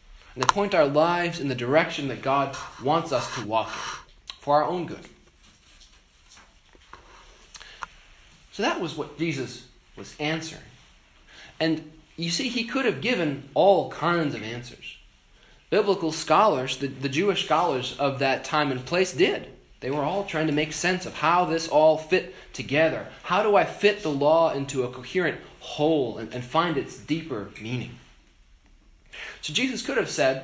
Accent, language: American, English